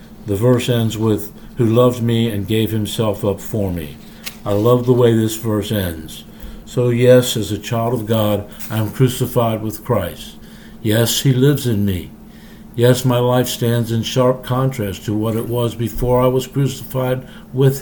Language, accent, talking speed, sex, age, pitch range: English, American, 180 wpm, male, 60-79, 105-125 Hz